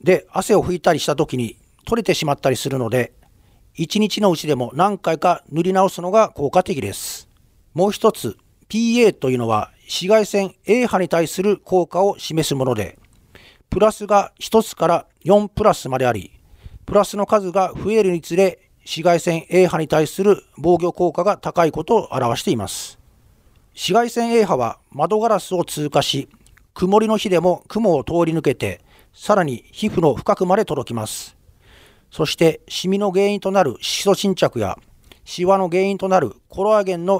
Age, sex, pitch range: 40-59, male, 130-195 Hz